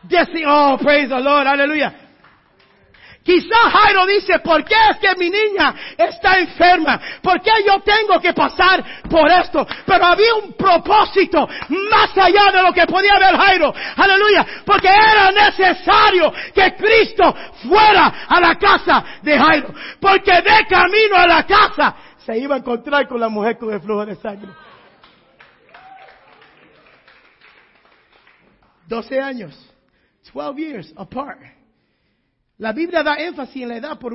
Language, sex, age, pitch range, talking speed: Spanish, male, 50-69, 240-370 Hz, 135 wpm